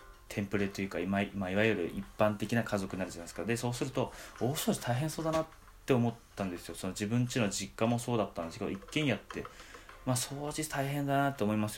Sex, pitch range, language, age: male, 95-120 Hz, Japanese, 20-39